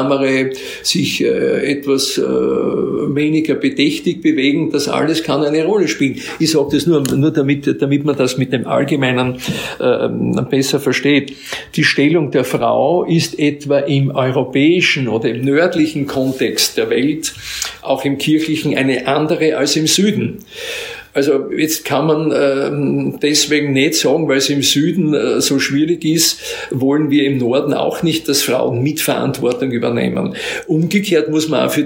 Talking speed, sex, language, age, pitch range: 145 wpm, male, German, 50-69, 140-160 Hz